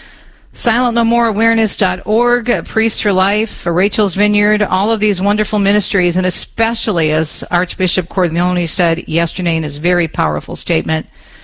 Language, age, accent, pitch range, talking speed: English, 50-69, American, 160-215 Hz, 120 wpm